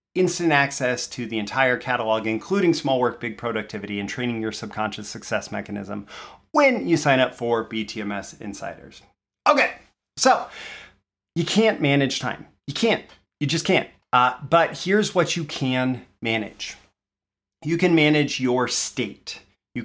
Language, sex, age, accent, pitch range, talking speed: English, male, 30-49, American, 120-150 Hz, 145 wpm